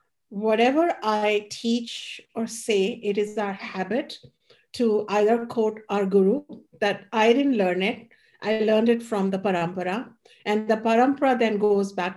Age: 50-69